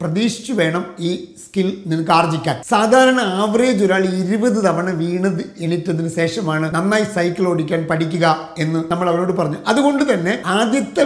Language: Malayalam